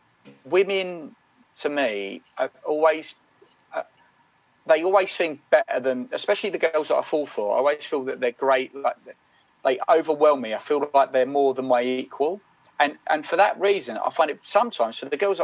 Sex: male